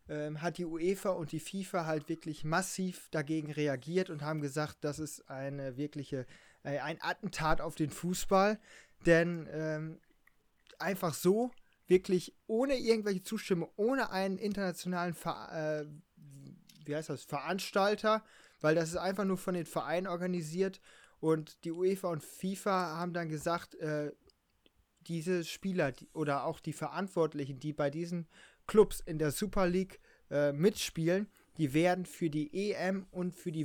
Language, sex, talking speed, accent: German, male, 145 wpm, German